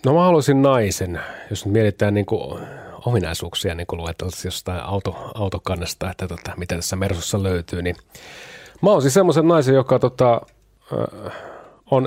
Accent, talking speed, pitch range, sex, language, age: native, 135 wpm, 90-115 Hz, male, Finnish, 30-49